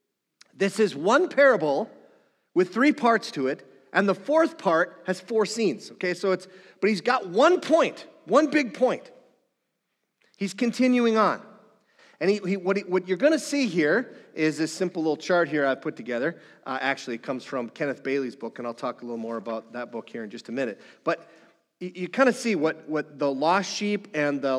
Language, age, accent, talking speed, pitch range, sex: English, 40-59, American, 205 wpm, 130-195 Hz, male